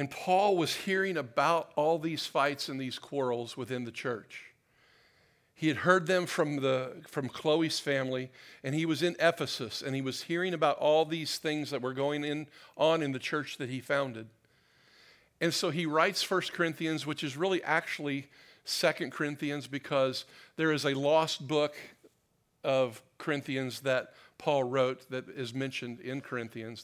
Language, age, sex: English, 50-69, male